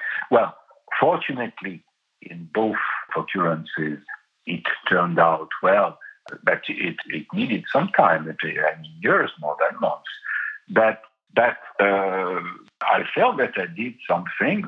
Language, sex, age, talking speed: English, male, 60-79, 120 wpm